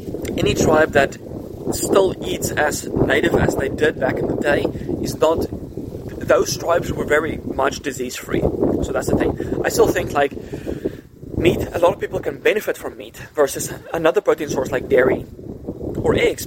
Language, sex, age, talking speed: English, male, 20-39, 170 wpm